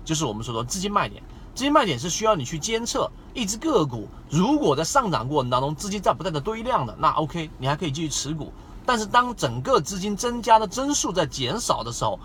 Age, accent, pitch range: 30-49, native, 125-200 Hz